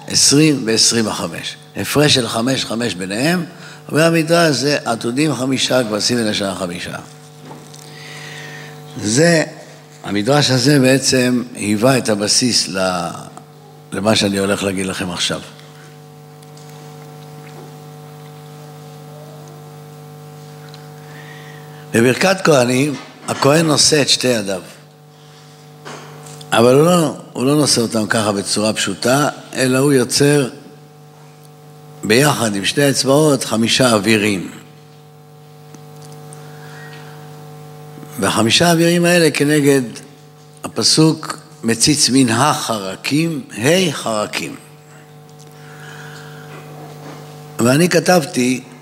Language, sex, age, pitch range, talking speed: Hebrew, male, 60-79, 125-150 Hz, 85 wpm